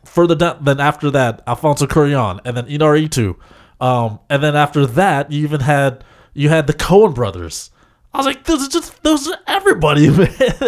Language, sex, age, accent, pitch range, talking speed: English, male, 20-39, American, 115-150 Hz, 190 wpm